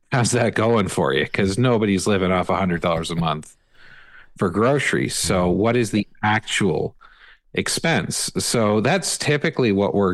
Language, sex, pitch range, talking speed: English, male, 95-115 Hz, 160 wpm